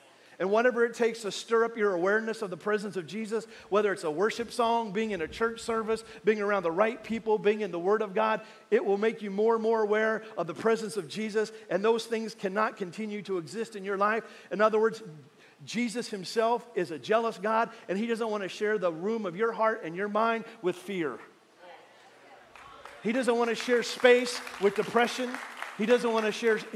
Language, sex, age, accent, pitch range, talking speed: English, male, 40-59, American, 195-225 Hz, 215 wpm